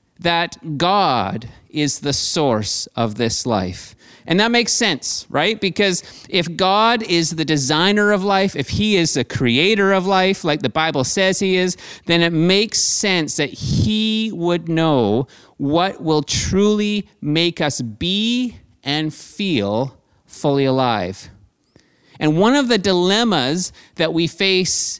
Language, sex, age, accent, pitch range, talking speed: English, male, 30-49, American, 135-190 Hz, 145 wpm